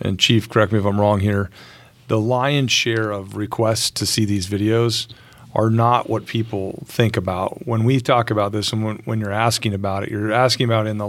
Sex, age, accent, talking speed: male, 40-59, American, 220 wpm